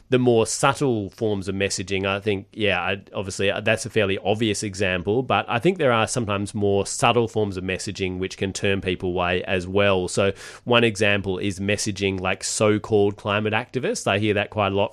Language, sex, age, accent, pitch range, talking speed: English, male, 30-49, Australian, 100-115 Hz, 195 wpm